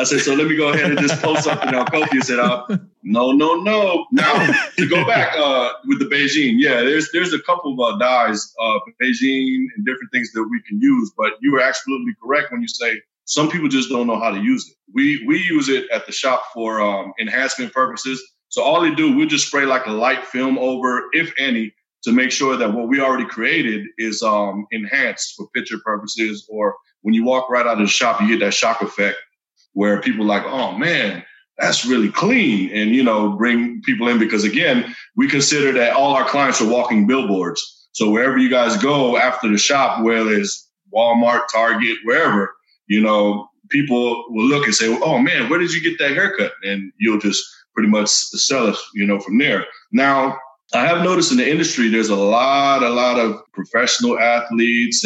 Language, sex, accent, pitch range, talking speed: English, male, American, 110-160 Hz, 210 wpm